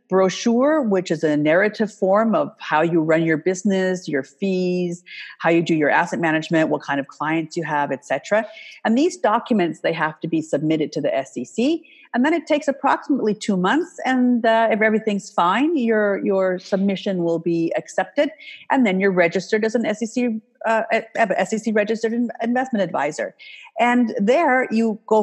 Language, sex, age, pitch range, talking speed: English, female, 50-69, 175-235 Hz, 170 wpm